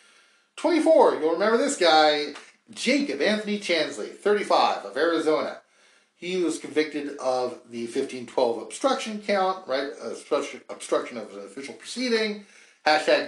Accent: American